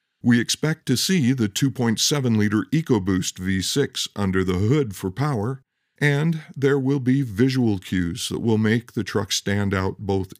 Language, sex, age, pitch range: English, male, 50-69, 100-135 Hz